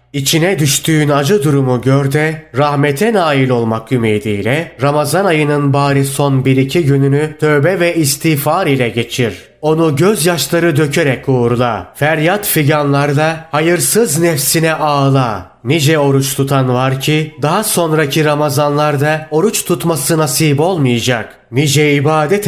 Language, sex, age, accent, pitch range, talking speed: Turkish, male, 30-49, native, 130-160 Hz, 115 wpm